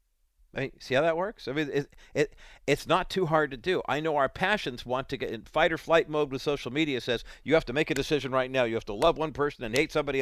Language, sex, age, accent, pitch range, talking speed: English, male, 50-69, American, 100-145 Hz, 290 wpm